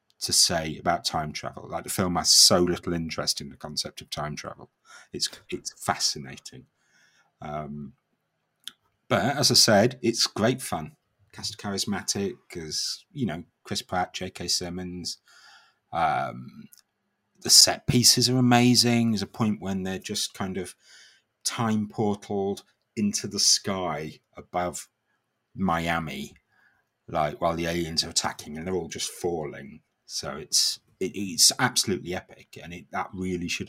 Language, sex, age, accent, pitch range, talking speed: English, male, 30-49, British, 85-110 Hz, 145 wpm